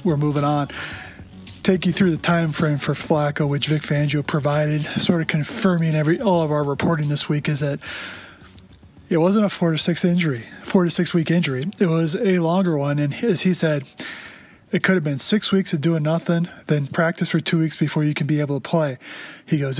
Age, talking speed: 20-39, 215 wpm